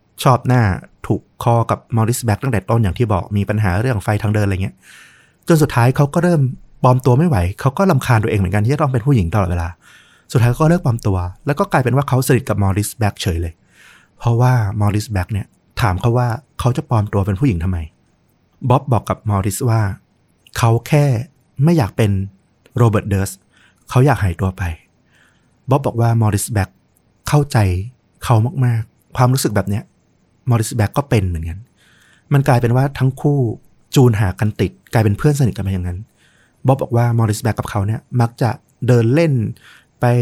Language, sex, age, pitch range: Thai, male, 30-49, 100-125 Hz